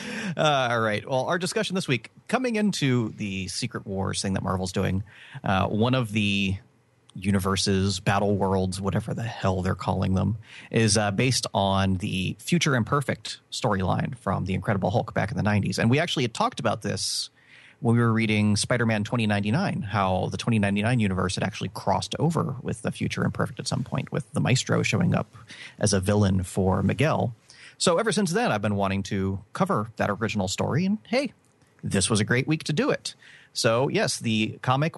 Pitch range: 100-140 Hz